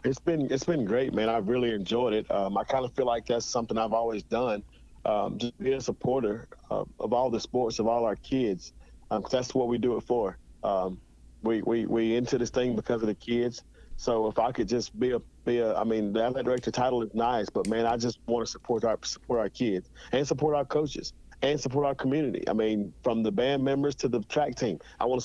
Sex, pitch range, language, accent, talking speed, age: male, 110-125 Hz, English, American, 245 wpm, 40-59